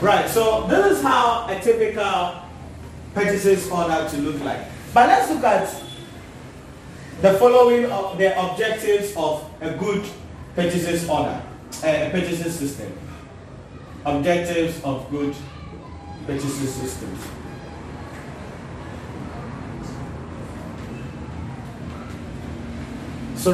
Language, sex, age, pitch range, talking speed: English, male, 40-59, 155-225 Hz, 90 wpm